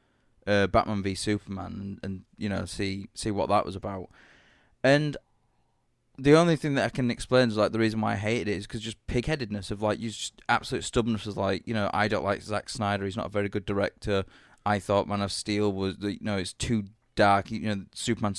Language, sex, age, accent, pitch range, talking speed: English, male, 20-39, British, 100-120 Hz, 225 wpm